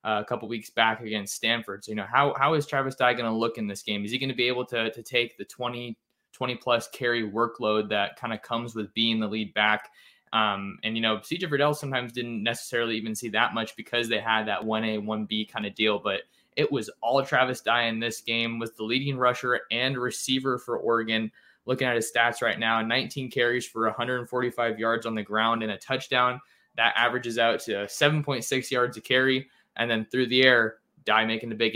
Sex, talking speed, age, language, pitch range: male, 220 wpm, 20-39, English, 110-125 Hz